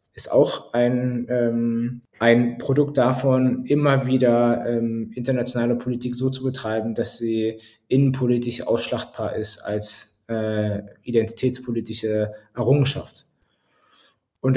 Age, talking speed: 20-39, 105 wpm